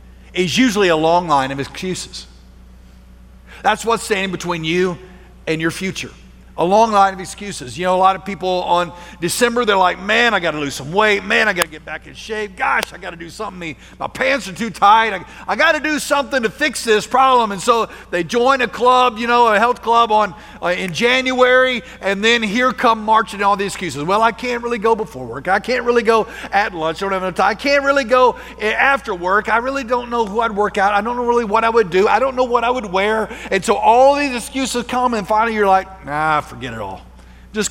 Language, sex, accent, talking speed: English, male, American, 240 wpm